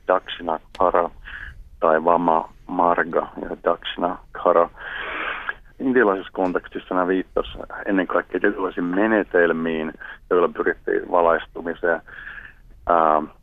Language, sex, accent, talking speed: Finnish, male, native, 90 wpm